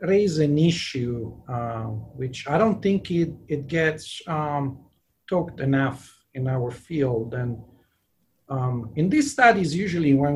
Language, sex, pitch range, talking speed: English, male, 130-160 Hz, 140 wpm